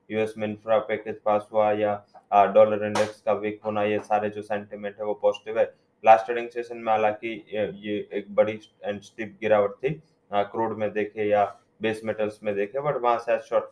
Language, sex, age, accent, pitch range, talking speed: English, male, 20-39, Indian, 105-120 Hz, 185 wpm